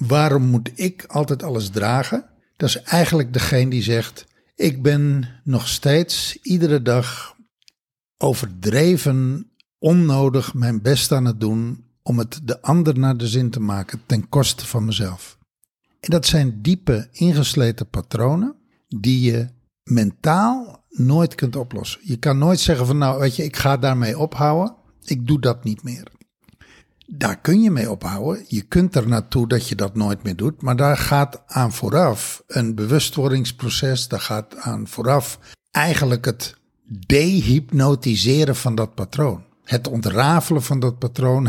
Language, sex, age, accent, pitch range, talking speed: Dutch, male, 60-79, Dutch, 120-150 Hz, 150 wpm